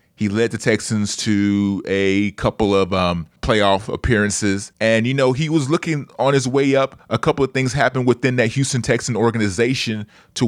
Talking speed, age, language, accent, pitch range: 185 wpm, 30-49, English, American, 100-130 Hz